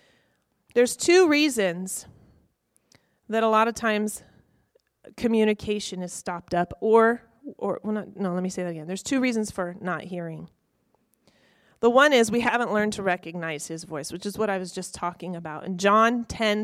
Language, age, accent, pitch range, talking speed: English, 30-49, American, 175-225 Hz, 175 wpm